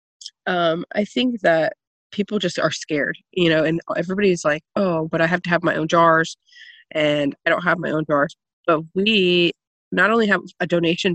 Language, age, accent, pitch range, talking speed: English, 20-39, American, 155-185 Hz, 195 wpm